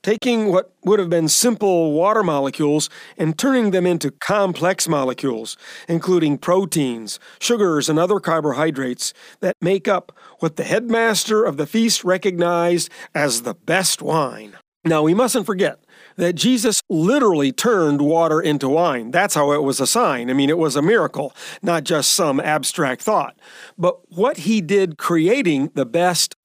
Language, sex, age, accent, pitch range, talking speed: English, male, 40-59, American, 145-195 Hz, 155 wpm